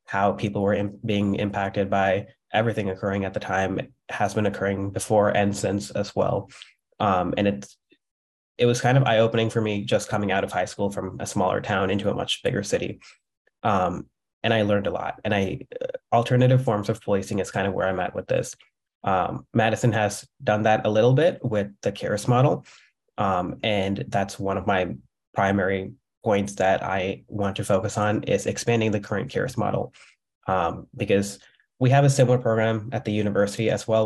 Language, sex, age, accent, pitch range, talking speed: English, male, 20-39, American, 100-115 Hz, 195 wpm